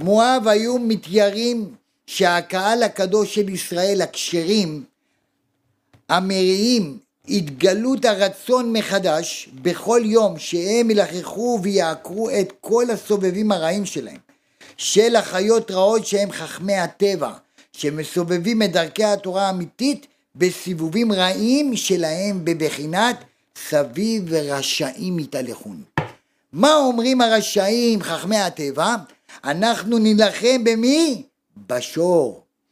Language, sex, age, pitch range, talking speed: Hebrew, male, 50-69, 175-230 Hz, 90 wpm